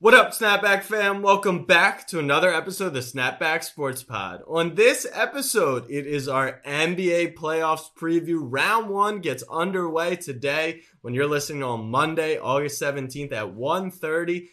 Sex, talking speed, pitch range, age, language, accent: male, 155 wpm, 130-175 Hz, 20-39, English, American